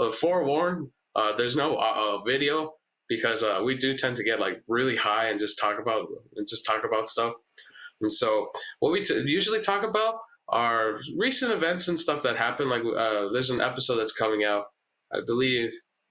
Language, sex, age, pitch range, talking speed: English, male, 20-39, 110-180 Hz, 190 wpm